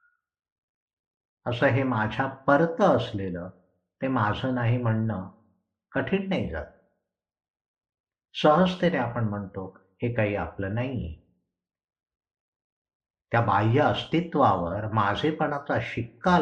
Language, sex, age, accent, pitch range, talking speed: Marathi, male, 60-79, native, 90-140 Hz, 55 wpm